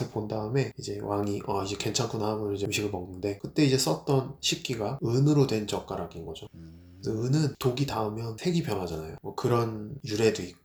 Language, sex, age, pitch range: Japanese, male, 20-39, 100-135 Hz